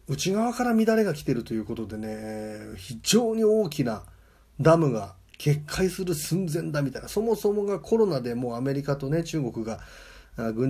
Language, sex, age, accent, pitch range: Japanese, male, 30-49, native, 110-160 Hz